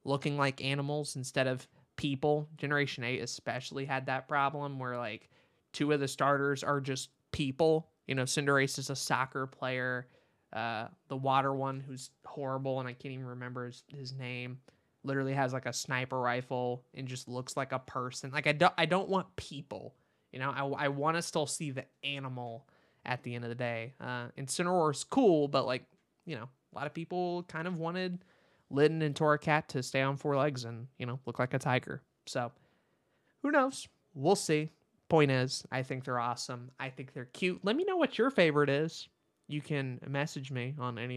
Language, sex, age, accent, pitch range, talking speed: English, male, 20-39, American, 125-150 Hz, 195 wpm